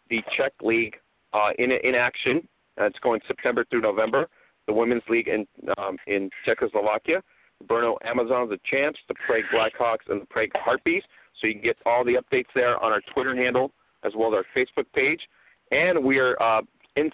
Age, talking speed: 40-59, 195 wpm